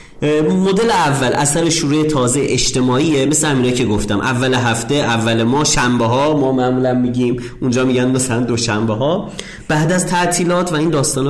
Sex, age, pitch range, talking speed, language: male, 30-49, 120-165 Hz, 160 wpm, Persian